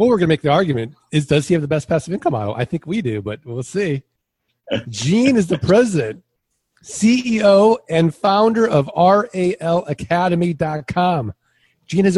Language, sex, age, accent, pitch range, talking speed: English, male, 40-59, American, 125-190 Hz, 170 wpm